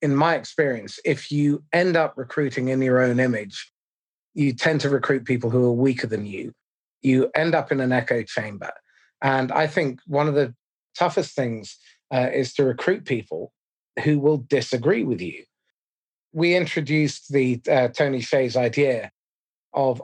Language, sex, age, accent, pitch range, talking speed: English, male, 30-49, British, 125-150 Hz, 165 wpm